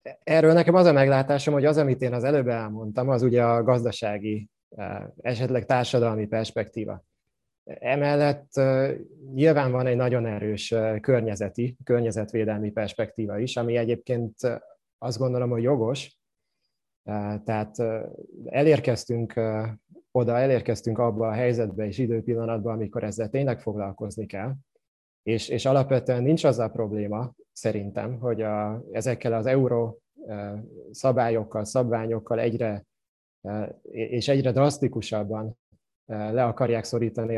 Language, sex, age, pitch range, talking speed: English, male, 20-39, 110-125 Hz, 110 wpm